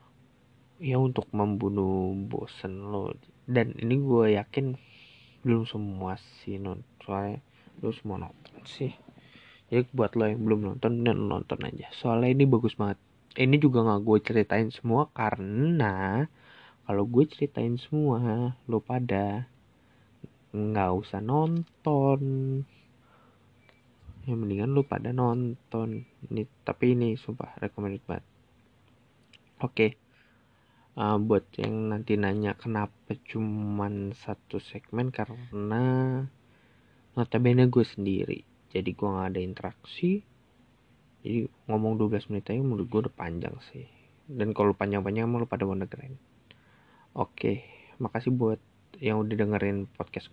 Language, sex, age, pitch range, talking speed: Indonesian, male, 20-39, 105-125 Hz, 120 wpm